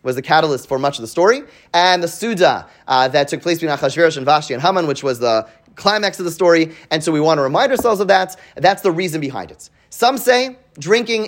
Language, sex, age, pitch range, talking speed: English, male, 30-49, 140-195 Hz, 240 wpm